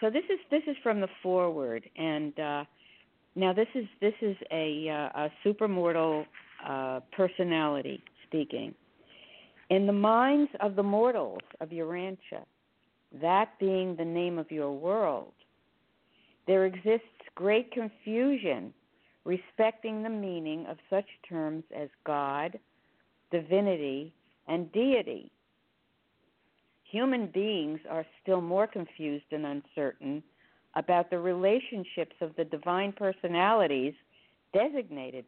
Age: 50-69